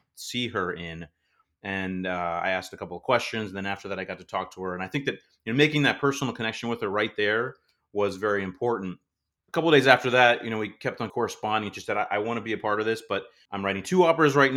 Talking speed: 275 wpm